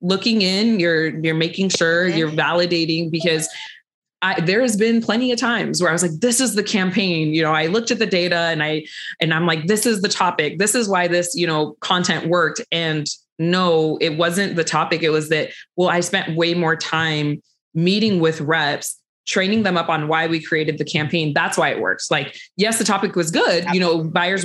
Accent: American